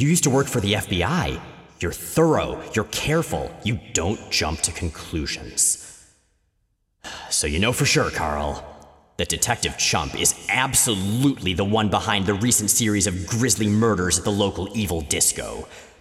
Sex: male